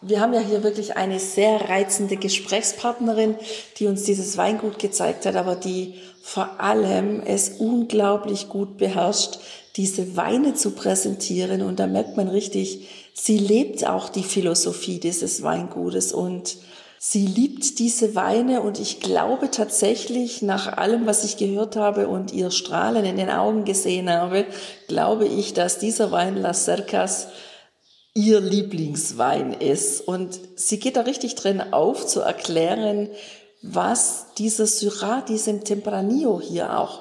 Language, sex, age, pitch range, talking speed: German, female, 50-69, 185-220 Hz, 140 wpm